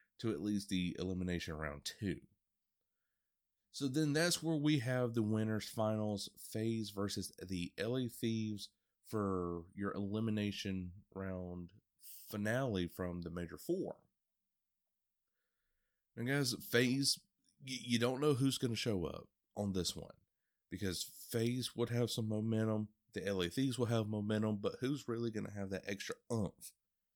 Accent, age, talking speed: American, 30-49, 145 wpm